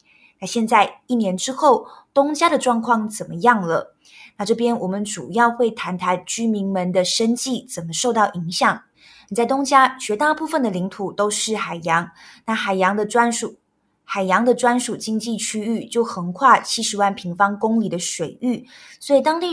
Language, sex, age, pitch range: Chinese, female, 20-39, 195-245 Hz